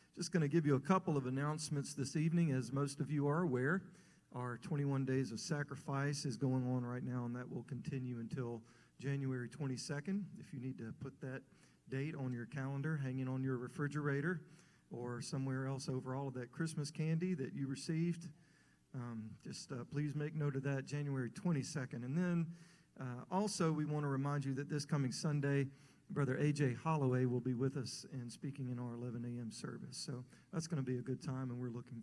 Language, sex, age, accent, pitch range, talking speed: English, male, 40-59, American, 130-160 Hz, 200 wpm